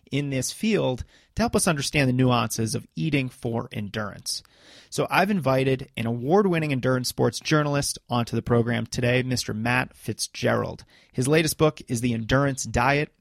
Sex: male